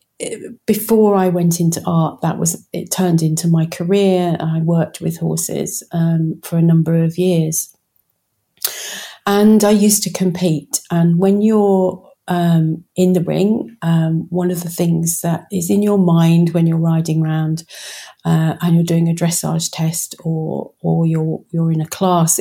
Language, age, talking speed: English, 40-59, 165 wpm